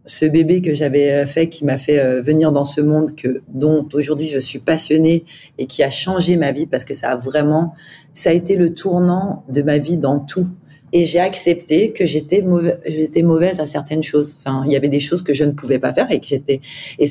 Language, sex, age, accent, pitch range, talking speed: French, female, 40-59, French, 135-165 Hz, 230 wpm